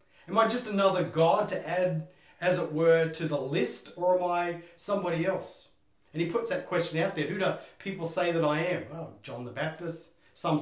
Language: English